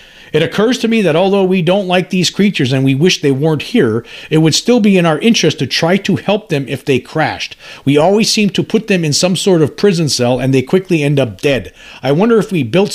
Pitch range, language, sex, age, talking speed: 120-170 Hz, English, male, 50-69, 255 wpm